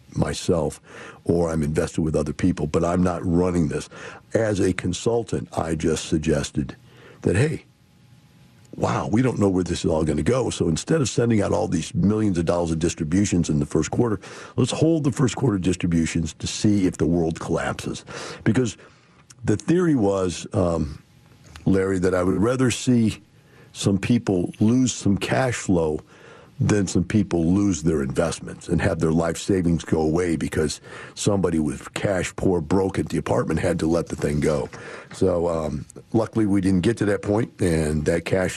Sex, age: male, 50-69